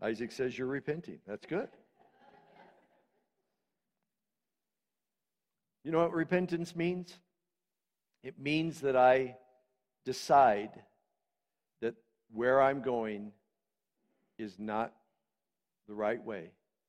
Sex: male